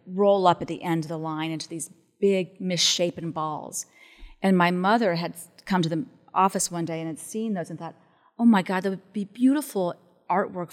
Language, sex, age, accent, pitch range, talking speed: English, female, 40-59, American, 165-210 Hz, 205 wpm